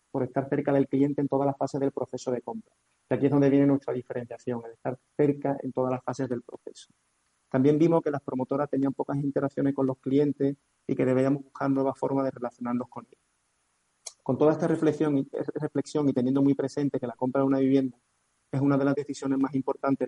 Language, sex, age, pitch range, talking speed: Spanish, male, 30-49, 130-145 Hz, 210 wpm